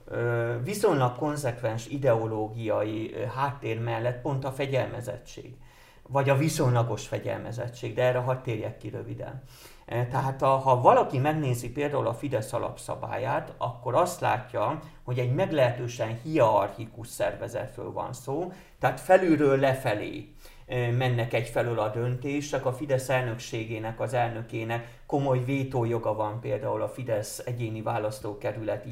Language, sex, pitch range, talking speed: Hungarian, male, 115-135 Hz, 115 wpm